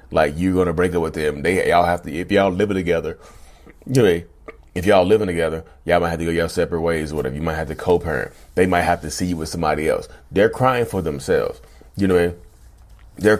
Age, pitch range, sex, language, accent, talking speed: 30-49, 85-115 Hz, male, English, American, 235 wpm